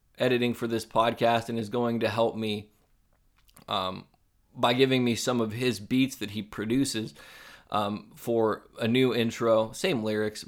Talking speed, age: 160 wpm, 20-39